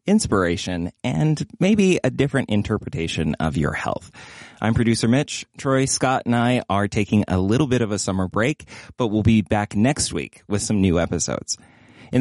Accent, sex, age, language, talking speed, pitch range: American, male, 20-39, English, 175 wpm, 105-140 Hz